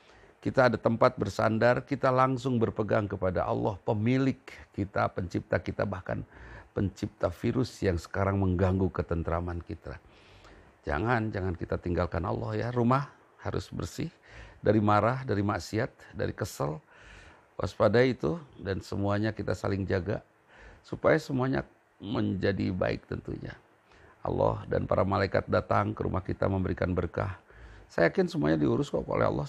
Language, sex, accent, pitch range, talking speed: Indonesian, male, native, 90-110 Hz, 130 wpm